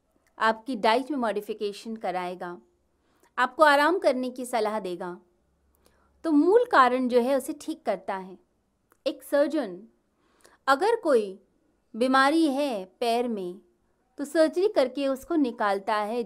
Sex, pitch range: female, 200-290 Hz